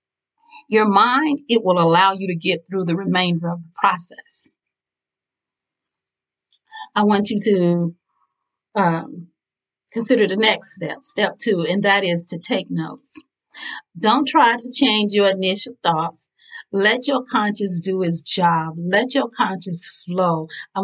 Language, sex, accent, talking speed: English, female, American, 140 wpm